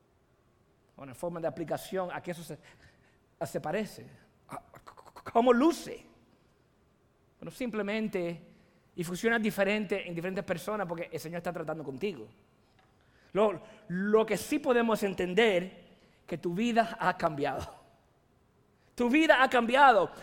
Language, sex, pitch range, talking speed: Spanish, male, 205-260 Hz, 130 wpm